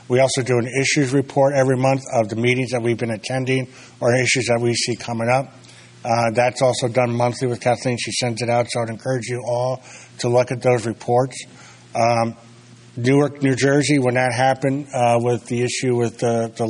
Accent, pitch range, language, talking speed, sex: American, 115-125 Hz, English, 205 wpm, male